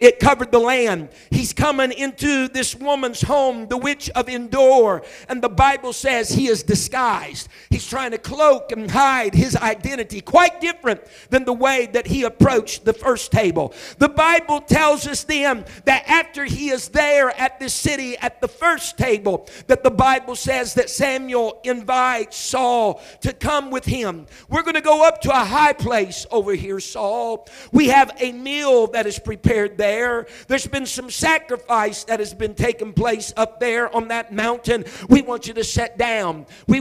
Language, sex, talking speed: English, male, 180 wpm